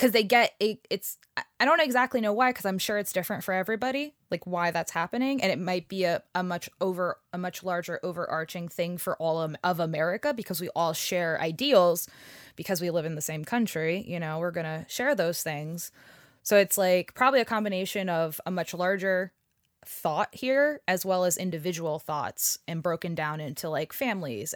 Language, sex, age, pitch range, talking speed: English, female, 20-39, 165-205 Hz, 200 wpm